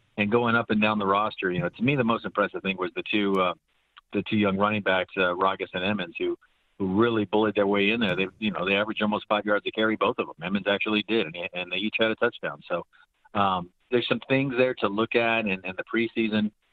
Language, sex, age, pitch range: English, male, 40-59, 100-115 Hz